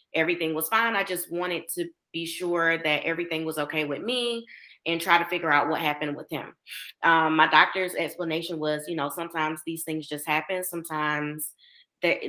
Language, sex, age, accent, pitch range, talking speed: English, female, 30-49, American, 155-180 Hz, 185 wpm